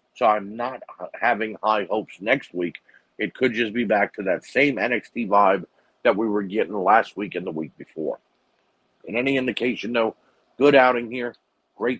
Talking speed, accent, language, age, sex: 180 wpm, American, English, 50-69, male